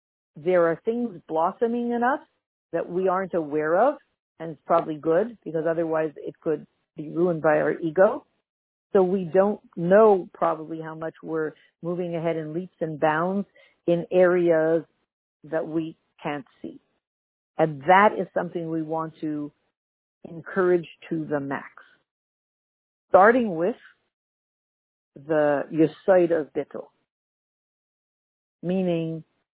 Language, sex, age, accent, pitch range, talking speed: English, female, 50-69, American, 155-185 Hz, 120 wpm